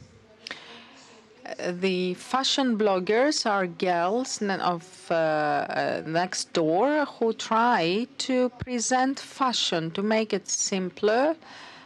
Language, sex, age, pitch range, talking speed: Greek, female, 40-59, 190-240 Hz, 85 wpm